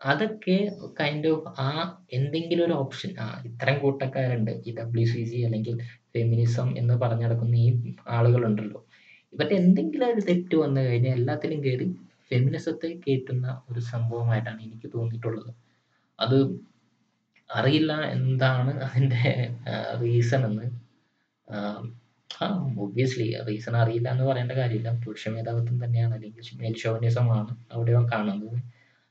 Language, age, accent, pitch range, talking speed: Malayalam, 20-39, native, 115-135 Hz, 105 wpm